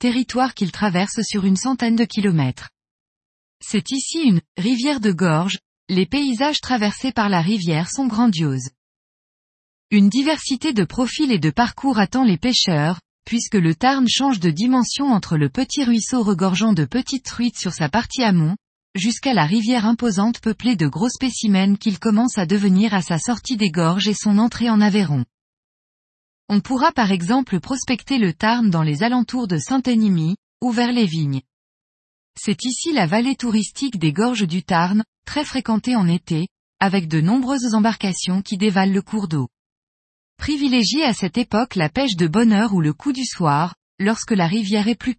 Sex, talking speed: female, 175 wpm